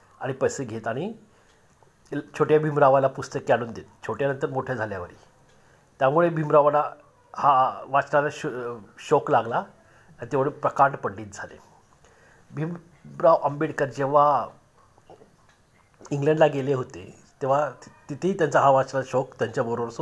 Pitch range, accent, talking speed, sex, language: 130-160 Hz, native, 110 wpm, male, Marathi